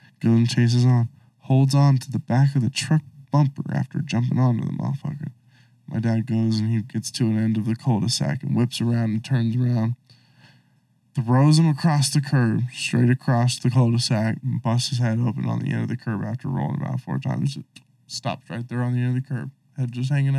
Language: English